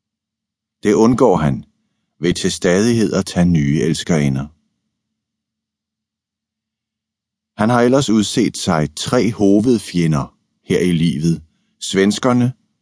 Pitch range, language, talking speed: 85-110 Hz, Danish, 100 wpm